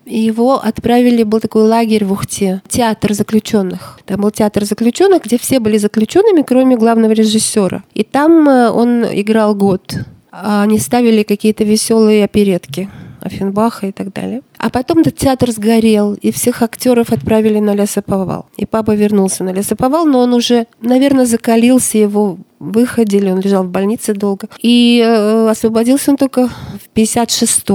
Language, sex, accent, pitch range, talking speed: Russian, female, native, 205-240 Hz, 150 wpm